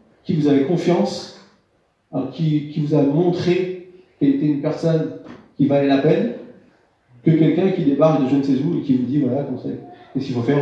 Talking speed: 205 wpm